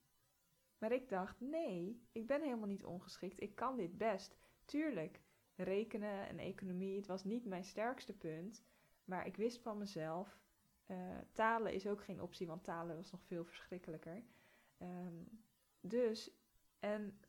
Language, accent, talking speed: Dutch, Dutch, 145 wpm